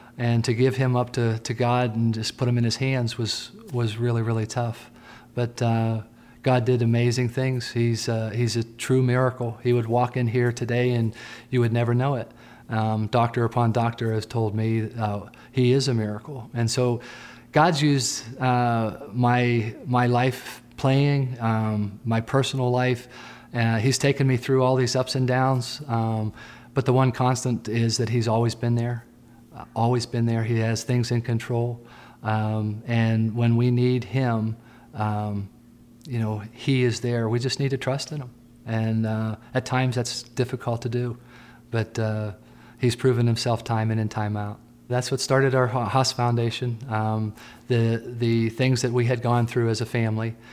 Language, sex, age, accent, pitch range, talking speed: English, male, 40-59, American, 115-125 Hz, 180 wpm